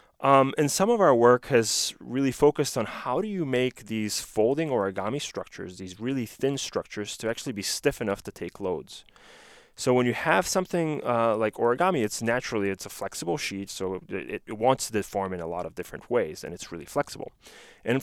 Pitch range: 100-130 Hz